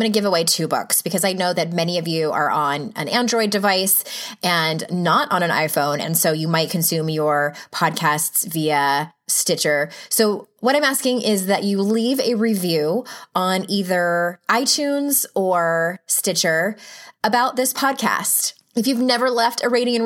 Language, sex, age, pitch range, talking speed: English, female, 20-39, 165-230 Hz, 175 wpm